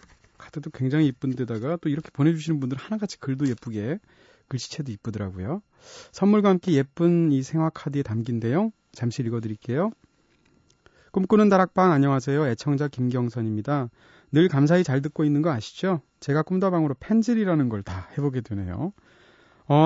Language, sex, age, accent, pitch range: Korean, male, 30-49, native, 130-170 Hz